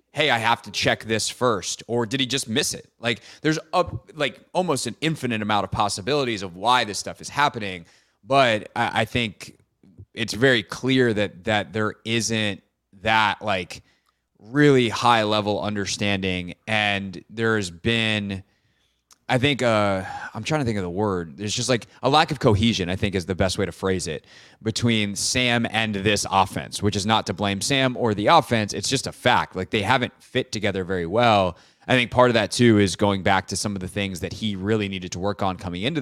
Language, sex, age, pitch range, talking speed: English, male, 20-39, 100-125 Hz, 205 wpm